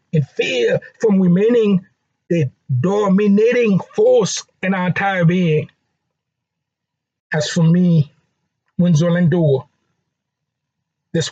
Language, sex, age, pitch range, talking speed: English, male, 50-69, 150-190 Hz, 85 wpm